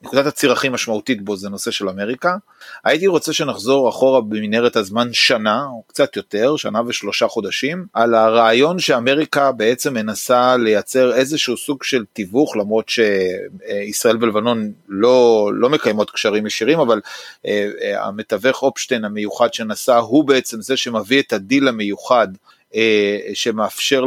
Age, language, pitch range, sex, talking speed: 30-49, Hebrew, 110-135 Hz, male, 130 wpm